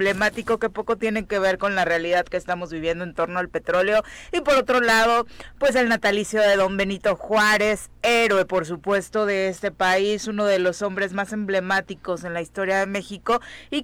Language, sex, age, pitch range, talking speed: Spanish, female, 30-49, 175-210 Hz, 195 wpm